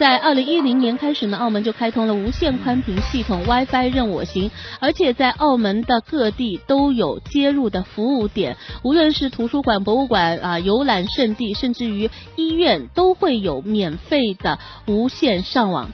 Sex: female